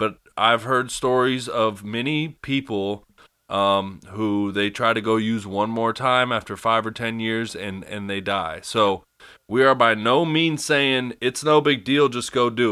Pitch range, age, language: 105-130 Hz, 20-39, English